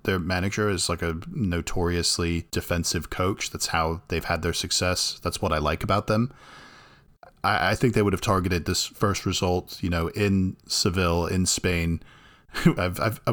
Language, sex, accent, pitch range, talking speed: English, male, American, 85-105 Hz, 165 wpm